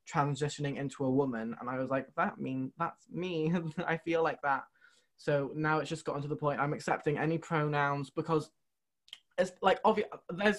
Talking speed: 185 wpm